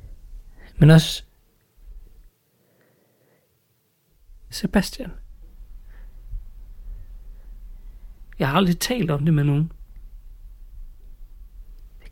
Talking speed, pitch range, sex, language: 60 wpm, 110-160 Hz, male, Danish